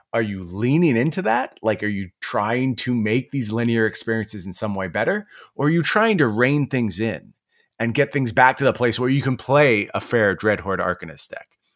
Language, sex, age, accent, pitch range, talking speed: English, male, 30-49, American, 100-130 Hz, 215 wpm